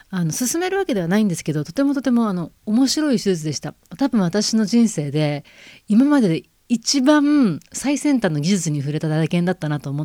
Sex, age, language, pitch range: female, 40-59, Japanese, 155-240 Hz